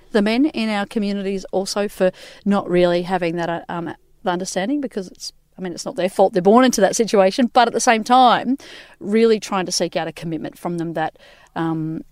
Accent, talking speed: Australian, 210 wpm